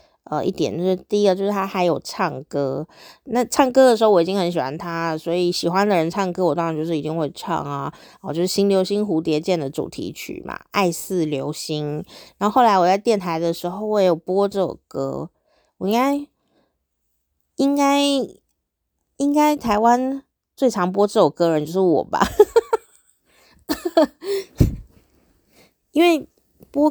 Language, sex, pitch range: Chinese, female, 165-230 Hz